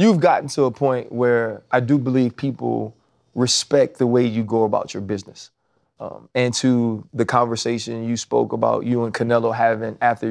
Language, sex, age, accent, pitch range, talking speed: English, male, 30-49, American, 115-130 Hz, 180 wpm